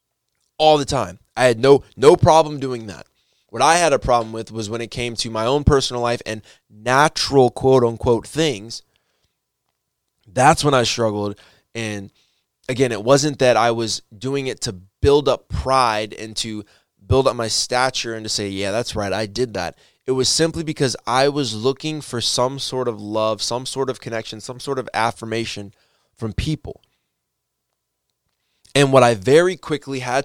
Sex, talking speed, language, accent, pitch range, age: male, 175 wpm, English, American, 105-130 Hz, 20-39